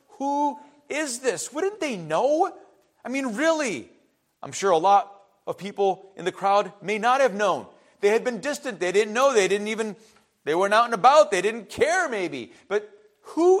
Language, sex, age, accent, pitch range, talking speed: English, male, 40-59, American, 195-285 Hz, 190 wpm